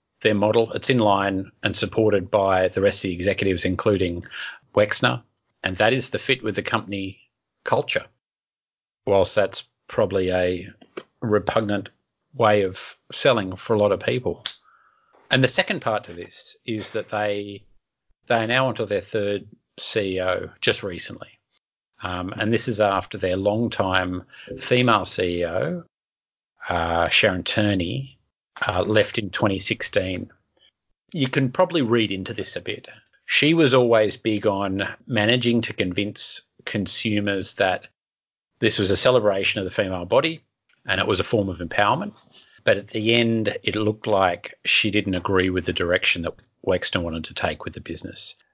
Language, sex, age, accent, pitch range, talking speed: English, male, 40-59, Australian, 95-115 Hz, 155 wpm